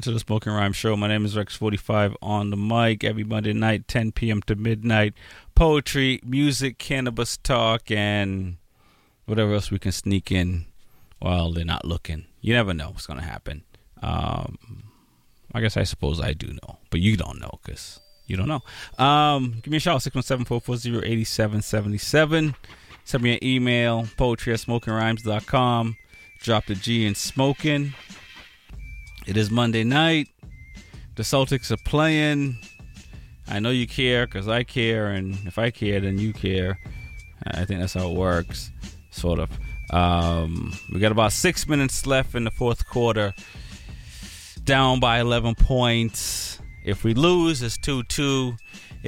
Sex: male